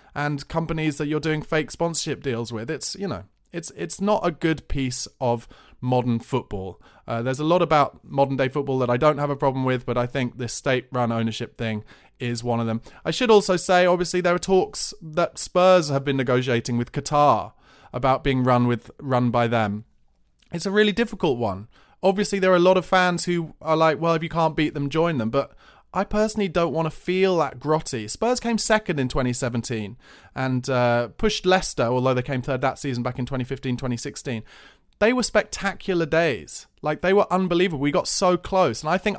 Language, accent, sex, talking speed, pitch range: English, British, male, 205 wpm, 125-175 Hz